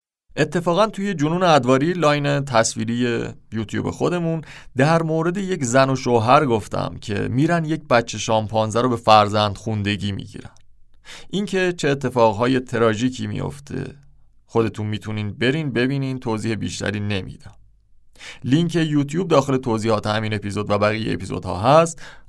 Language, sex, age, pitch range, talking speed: Persian, male, 30-49, 110-160 Hz, 130 wpm